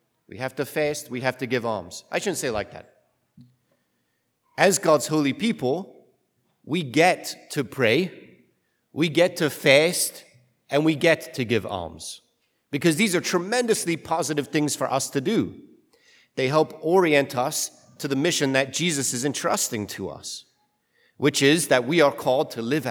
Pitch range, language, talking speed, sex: 125-165 Hz, English, 165 wpm, male